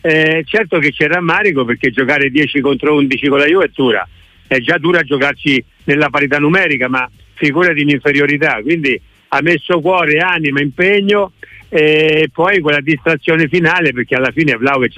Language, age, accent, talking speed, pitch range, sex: Italian, 50-69, native, 170 wpm, 140-175 Hz, male